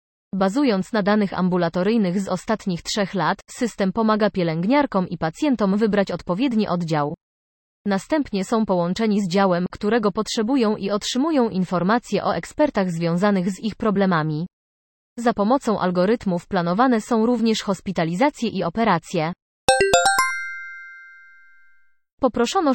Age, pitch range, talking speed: 20-39, 180-225 Hz, 110 wpm